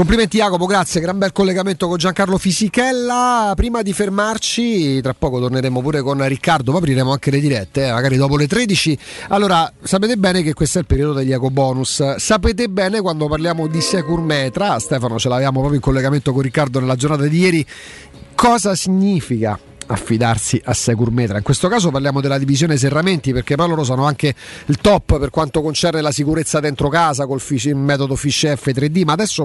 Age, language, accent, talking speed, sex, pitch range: 40-59, Italian, native, 180 wpm, male, 140-185 Hz